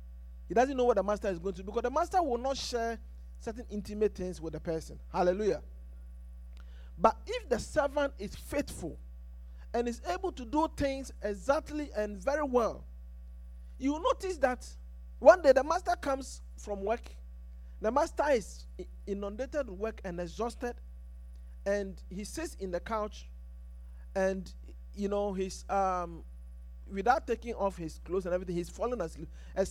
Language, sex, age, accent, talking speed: English, male, 50-69, Nigerian, 160 wpm